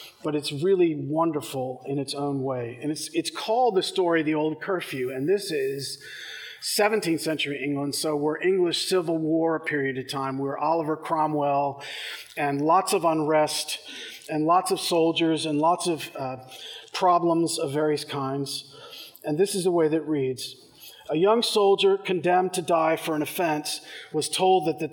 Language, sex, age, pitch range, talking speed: English, male, 40-59, 150-195 Hz, 170 wpm